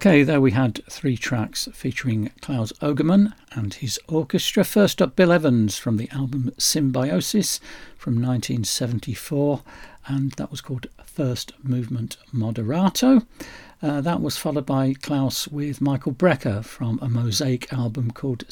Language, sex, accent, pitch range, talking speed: English, male, British, 120-165 Hz, 140 wpm